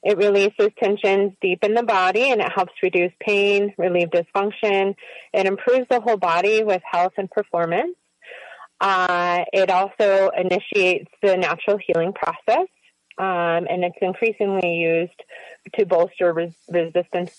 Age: 30-49